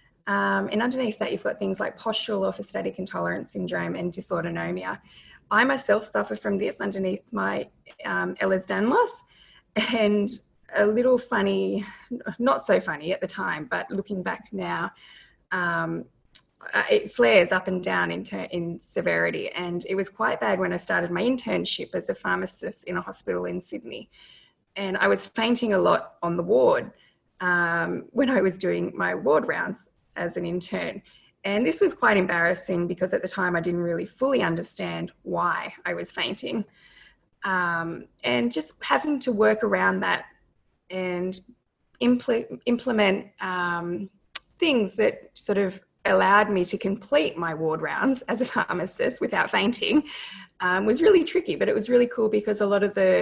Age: 20-39